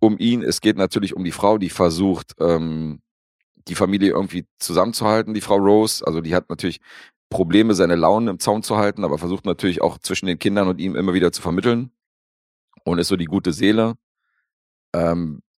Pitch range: 80-100 Hz